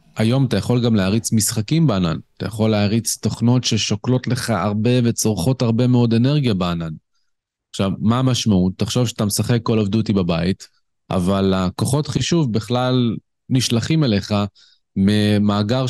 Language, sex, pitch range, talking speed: Hebrew, male, 95-125 Hz, 135 wpm